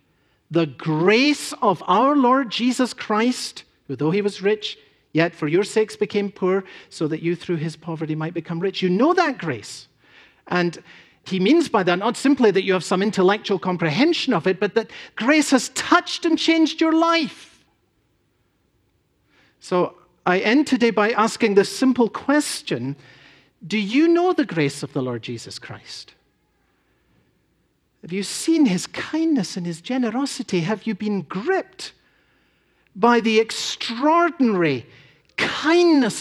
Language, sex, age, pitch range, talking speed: English, male, 50-69, 180-285 Hz, 150 wpm